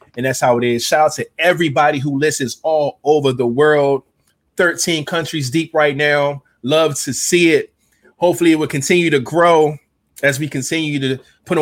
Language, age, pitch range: English, 20-39, 140-175 Hz